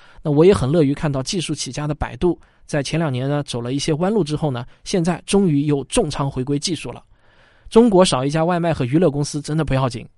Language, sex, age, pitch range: Chinese, male, 20-39, 125-160 Hz